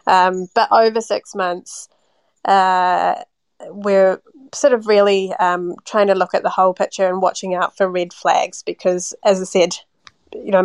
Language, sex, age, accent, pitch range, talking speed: English, female, 20-39, Australian, 185-210 Hz, 165 wpm